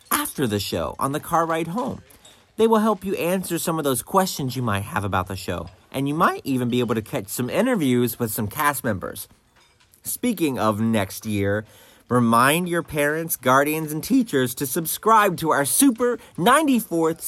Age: 30-49